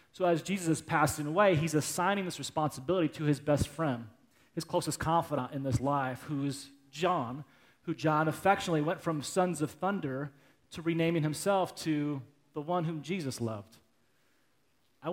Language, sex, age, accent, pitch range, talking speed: English, male, 30-49, American, 140-175 Hz, 165 wpm